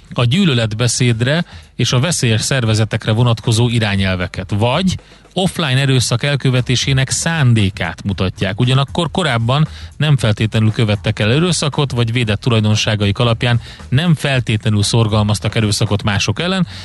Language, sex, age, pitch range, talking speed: Hungarian, male, 30-49, 105-130 Hz, 110 wpm